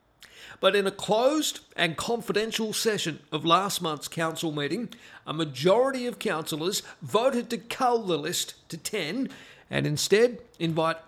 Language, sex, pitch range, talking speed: English, male, 165-220 Hz, 140 wpm